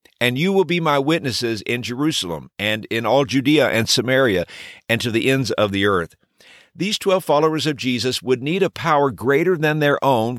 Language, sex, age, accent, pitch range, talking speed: English, male, 50-69, American, 110-150 Hz, 195 wpm